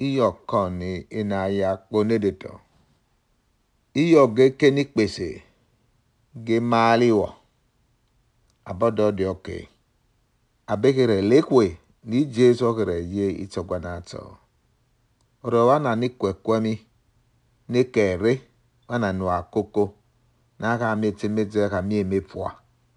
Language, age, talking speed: English, 50-69, 85 wpm